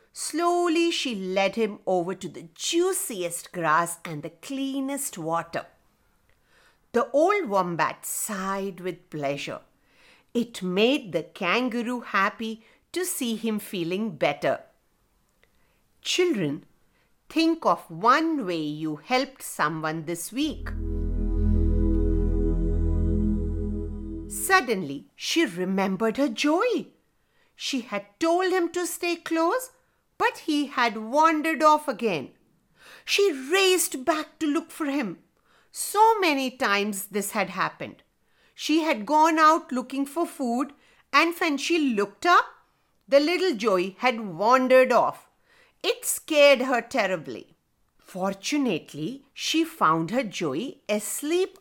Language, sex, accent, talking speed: English, female, Indian, 115 wpm